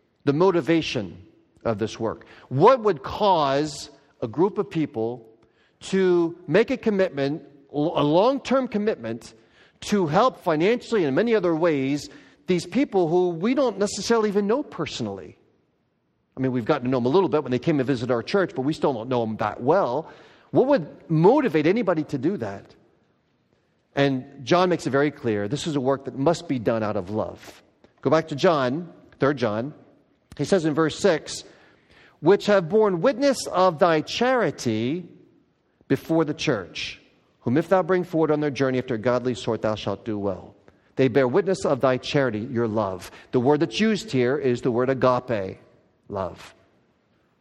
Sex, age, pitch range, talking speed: male, 40-59, 125-185 Hz, 175 wpm